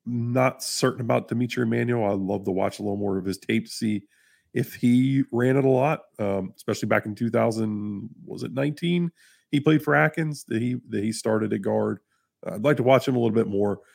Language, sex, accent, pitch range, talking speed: English, male, American, 100-125 Hz, 225 wpm